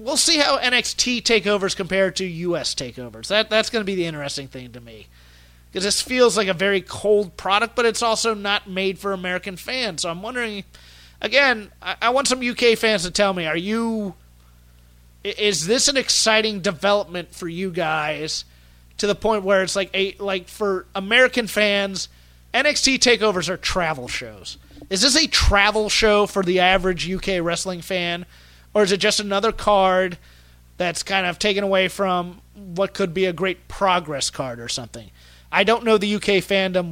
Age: 30-49